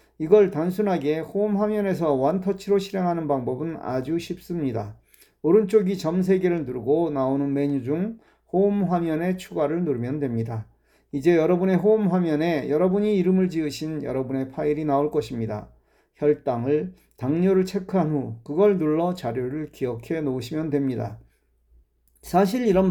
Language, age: Korean, 40-59